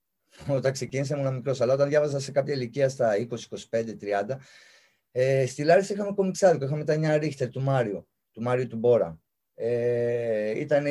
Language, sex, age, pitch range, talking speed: Greek, male, 30-49, 130-165 Hz, 170 wpm